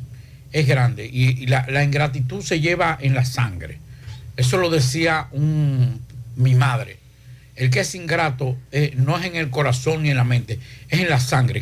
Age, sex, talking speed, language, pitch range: 60-79, male, 175 wpm, Spanish, 125-150 Hz